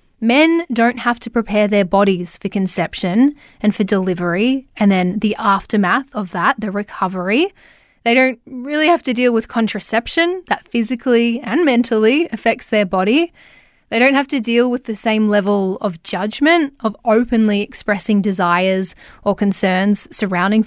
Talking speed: 155 wpm